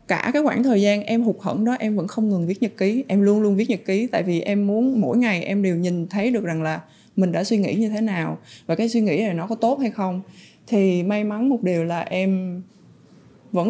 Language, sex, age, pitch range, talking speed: Vietnamese, female, 20-39, 180-230 Hz, 265 wpm